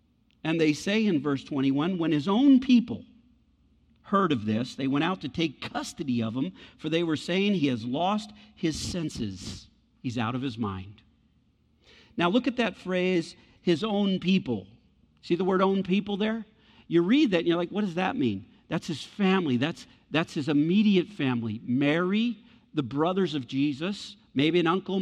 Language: English